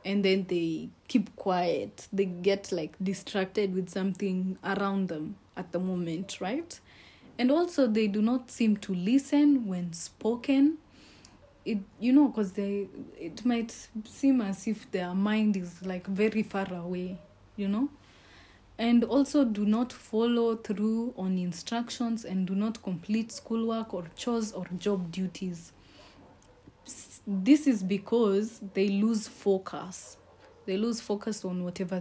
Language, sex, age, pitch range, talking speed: English, female, 20-39, 185-225 Hz, 140 wpm